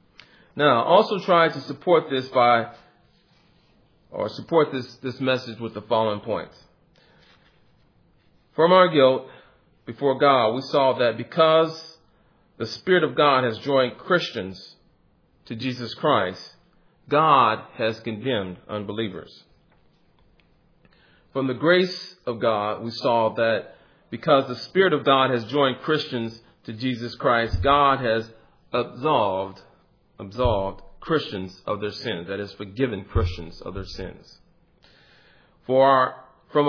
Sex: male